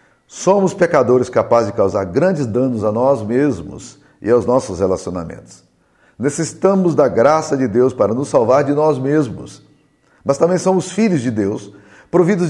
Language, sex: Portuguese, male